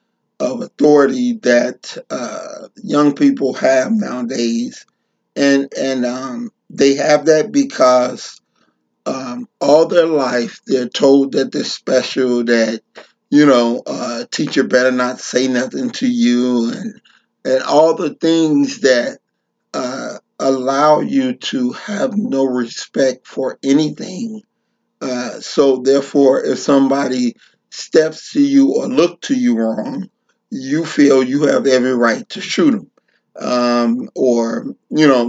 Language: English